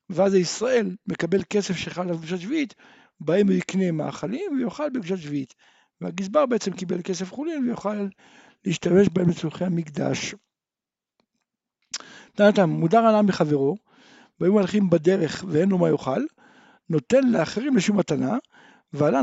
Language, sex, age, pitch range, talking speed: Hebrew, male, 60-79, 170-255 Hz, 130 wpm